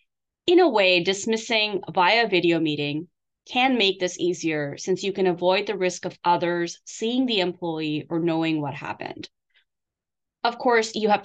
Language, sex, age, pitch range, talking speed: English, female, 30-49, 165-220 Hz, 160 wpm